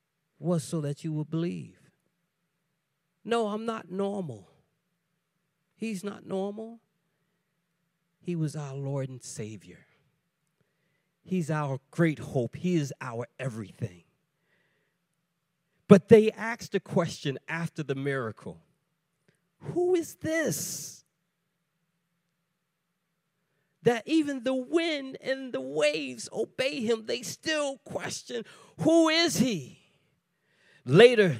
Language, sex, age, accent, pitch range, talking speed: English, male, 40-59, American, 155-205 Hz, 105 wpm